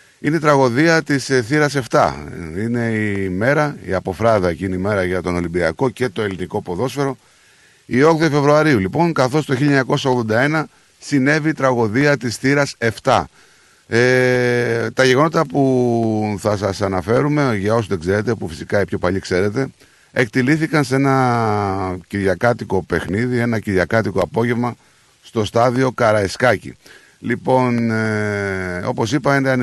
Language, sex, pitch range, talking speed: Greek, male, 100-135 Hz, 135 wpm